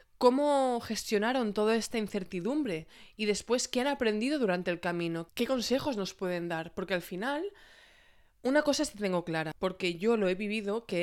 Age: 20-39